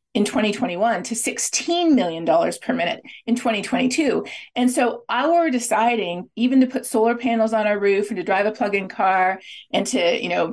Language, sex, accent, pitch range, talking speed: English, female, American, 215-260 Hz, 160 wpm